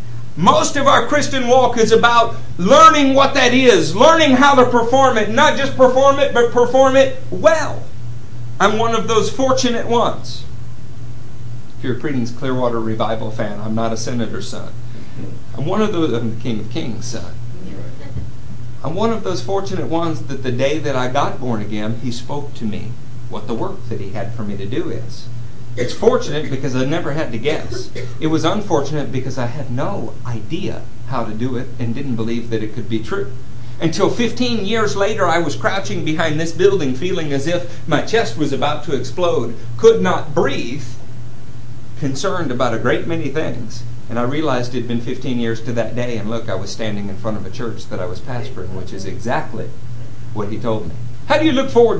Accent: American